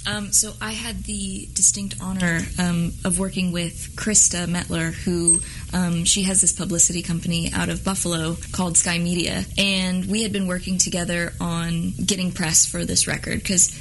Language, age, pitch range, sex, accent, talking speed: English, 20-39, 170-195 Hz, female, American, 170 wpm